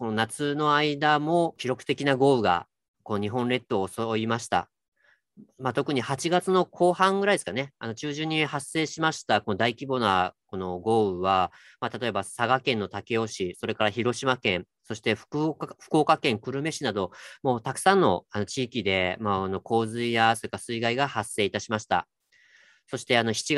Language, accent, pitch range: Japanese, native, 105-145 Hz